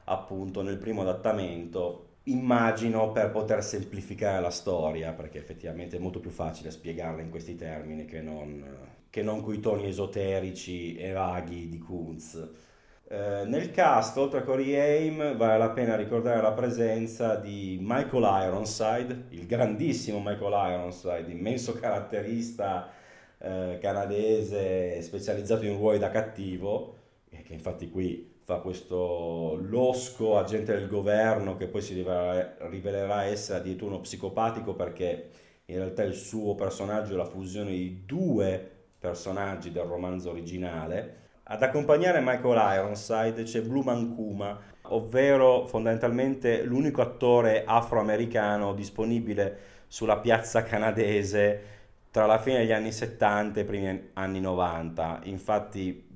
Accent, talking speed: native, 130 wpm